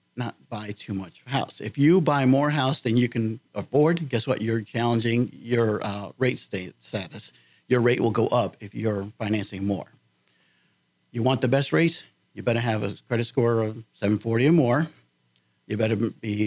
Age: 50-69